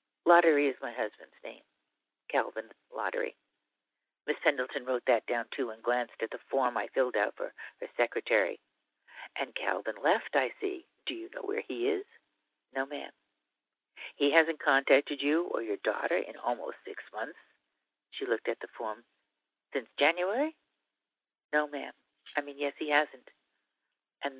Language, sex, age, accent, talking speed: English, female, 50-69, American, 155 wpm